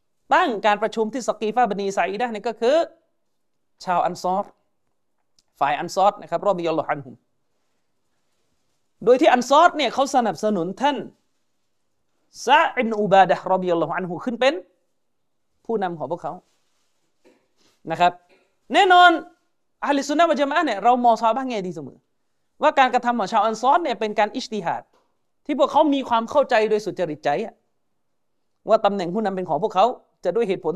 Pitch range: 195-270 Hz